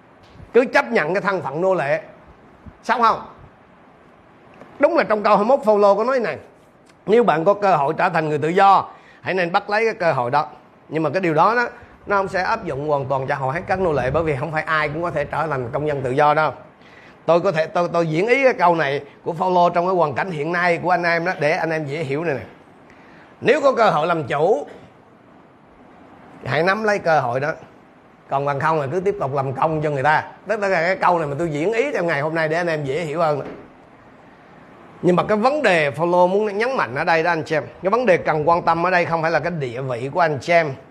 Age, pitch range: 30-49, 150-195 Hz